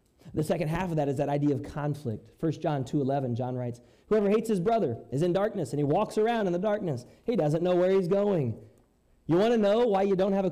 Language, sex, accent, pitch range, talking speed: English, male, American, 120-170 Hz, 250 wpm